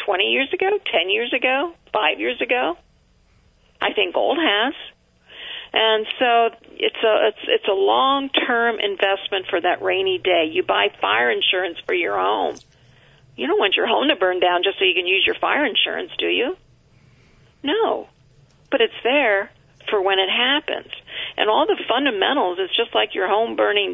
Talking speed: 170 wpm